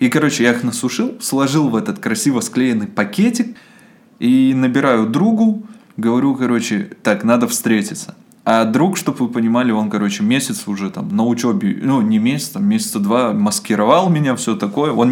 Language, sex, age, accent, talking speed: Russian, male, 20-39, native, 165 wpm